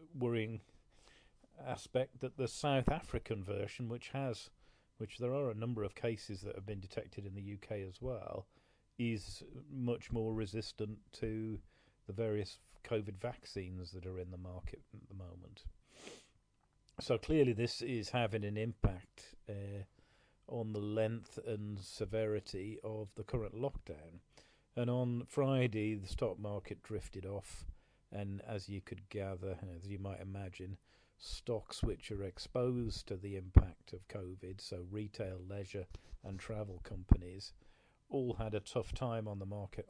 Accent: British